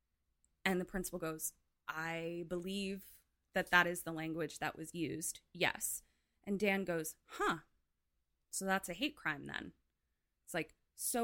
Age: 20-39